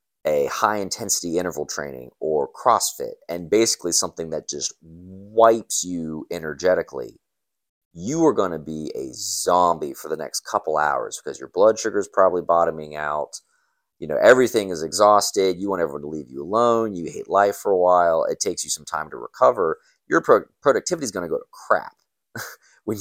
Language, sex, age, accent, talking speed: English, male, 30-49, American, 175 wpm